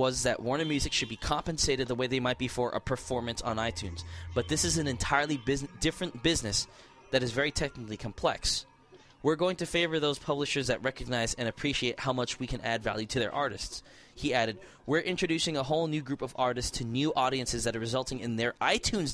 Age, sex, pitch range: 20-39, male, 115-150 Hz